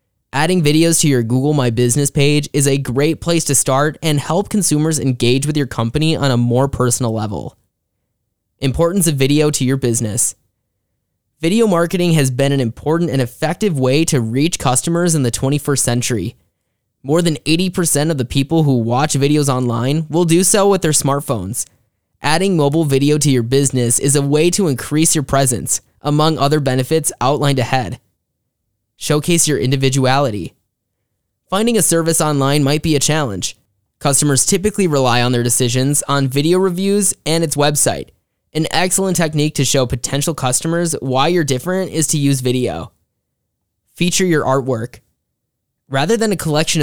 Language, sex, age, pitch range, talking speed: English, male, 10-29, 125-160 Hz, 160 wpm